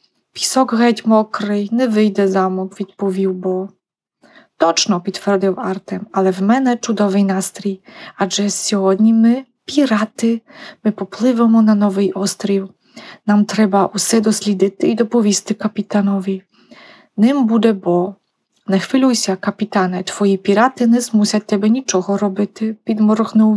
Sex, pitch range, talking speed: female, 195-225 Hz, 130 wpm